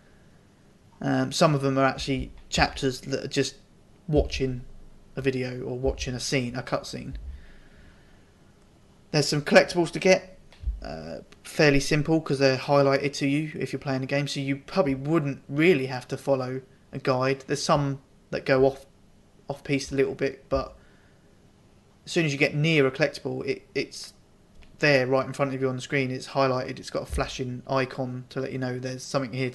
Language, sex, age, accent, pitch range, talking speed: English, male, 20-39, British, 130-150 Hz, 185 wpm